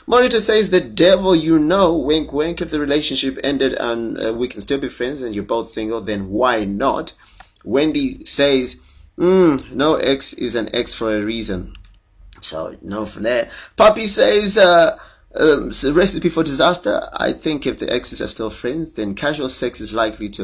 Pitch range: 100-140 Hz